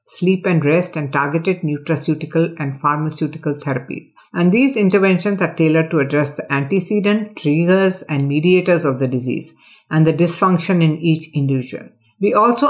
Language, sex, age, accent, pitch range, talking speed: English, female, 50-69, Indian, 155-185 Hz, 150 wpm